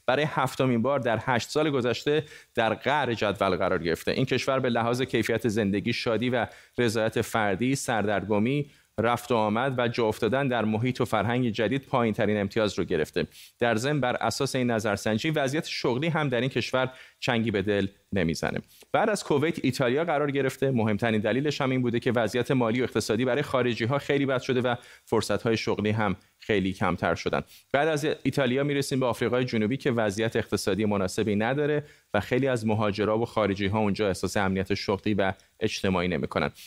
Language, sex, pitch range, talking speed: Persian, male, 110-140 Hz, 180 wpm